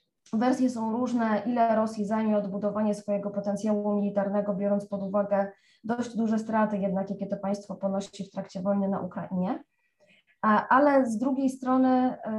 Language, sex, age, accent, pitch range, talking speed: Polish, female, 20-39, native, 205-235 Hz, 145 wpm